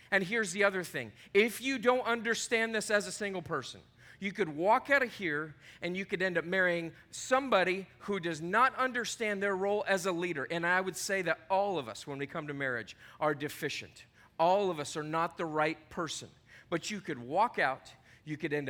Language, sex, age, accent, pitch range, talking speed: English, male, 40-59, American, 125-185 Hz, 215 wpm